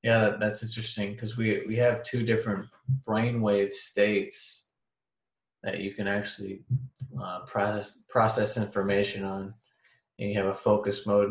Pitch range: 100-110 Hz